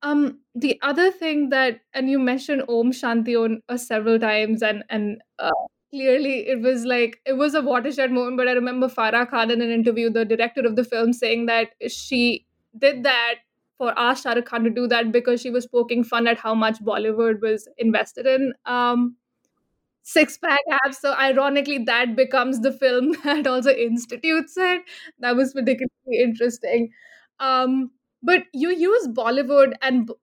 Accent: Indian